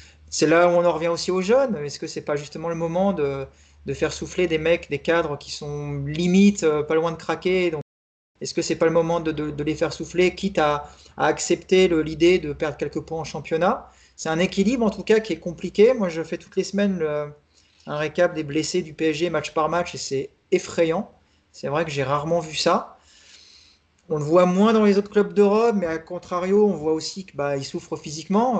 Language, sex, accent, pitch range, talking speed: French, male, French, 145-185 Hz, 235 wpm